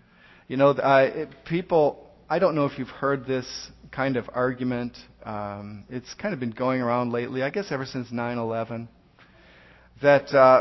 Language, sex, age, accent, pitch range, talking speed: English, male, 40-59, American, 120-165 Hz, 165 wpm